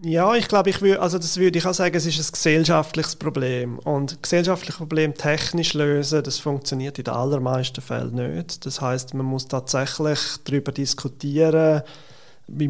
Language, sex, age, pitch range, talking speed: German, male, 30-49, 140-170 Hz, 170 wpm